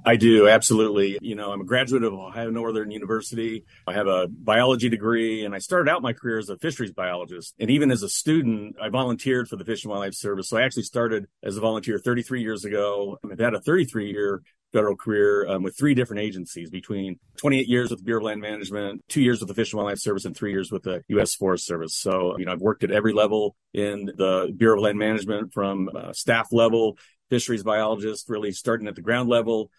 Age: 40-59